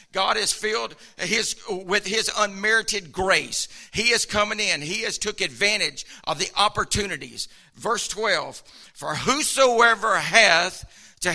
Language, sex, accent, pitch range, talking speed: English, male, American, 200-245 Hz, 130 wpm